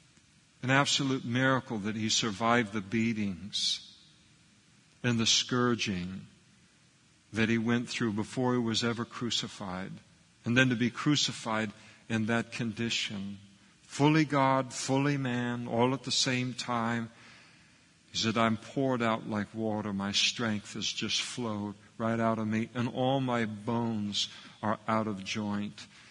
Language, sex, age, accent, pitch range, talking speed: English, male, 50-69, American, 105-120 Hz, 140 wpm